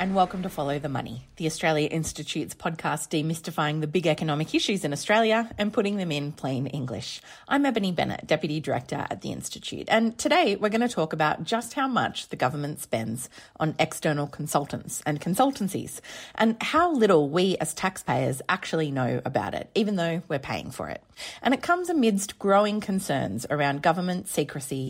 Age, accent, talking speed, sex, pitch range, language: 30-49, Australian, 180 wpm, female, 150-210 Hz, English